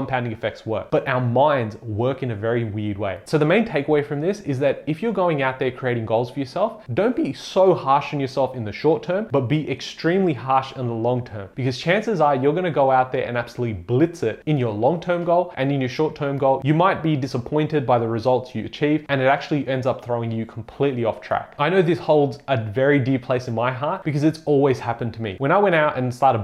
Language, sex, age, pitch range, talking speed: English, male, 20-39, 120-150 Hz, 250 wpm